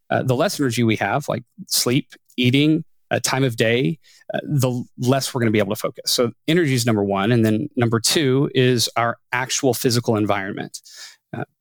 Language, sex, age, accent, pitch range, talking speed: English, male, 30-49, American, 110-130 Hz, 195 wpm